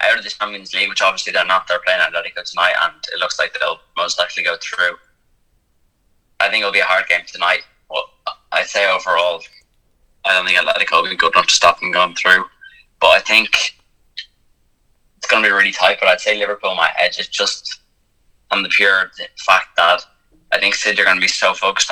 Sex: male